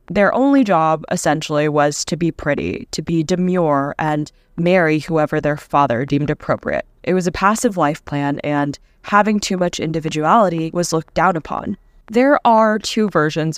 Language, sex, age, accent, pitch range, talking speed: English, female, 10-29, American, 150-180 Hz, 165 wpm